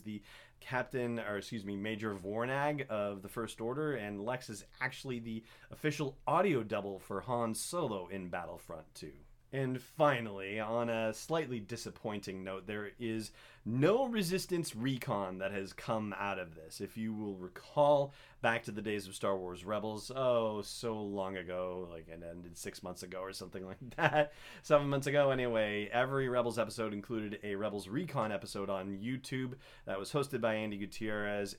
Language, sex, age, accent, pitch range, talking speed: English, male, 30-49, American, 100-130 Hz, 170 wpm